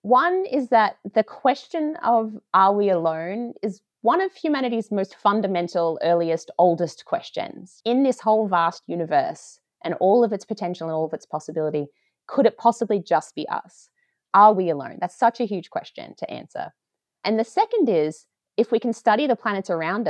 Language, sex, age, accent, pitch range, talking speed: English, female, 30-49, Australian, 165-235 Hz, 180 wpm